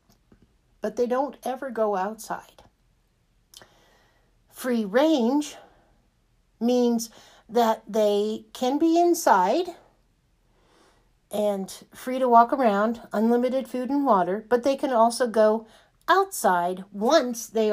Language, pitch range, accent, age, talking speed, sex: English, 205-255 Hz, American, 50-69, 105 wpm, female